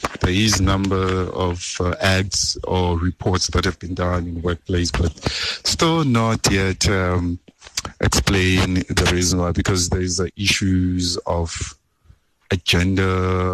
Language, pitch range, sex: English, 90-95 Hz, male